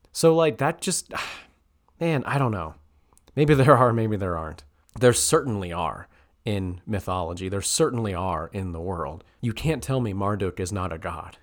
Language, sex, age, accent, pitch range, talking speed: English, male, 30-49, American, 90-125 Hz, 180 wpm